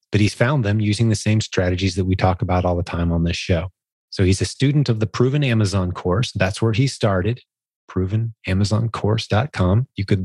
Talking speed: 200 wpm